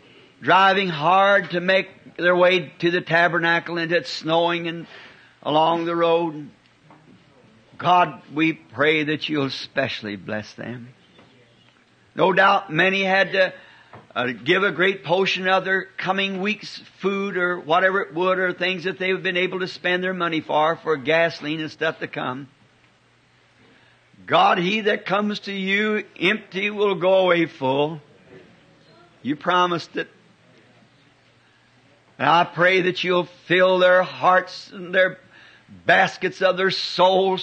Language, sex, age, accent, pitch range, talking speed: English, male, 60-79, American, 150-185 Hz, 140 wpm